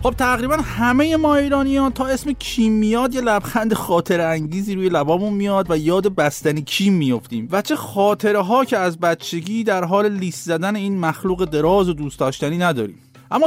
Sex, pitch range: male, 170-250 Hz